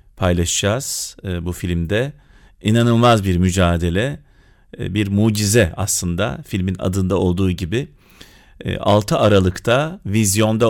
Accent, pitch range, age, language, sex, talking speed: native, 95-115 Hz, 40-59, Turkish, male, 90 wpm